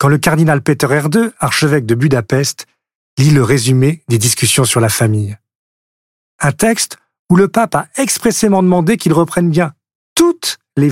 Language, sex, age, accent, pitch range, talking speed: French, male, 40-59, French, 120-175 Hz, 160 wpm